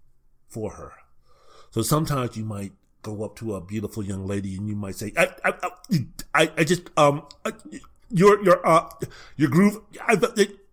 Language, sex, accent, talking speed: English, male, American, 175 wpm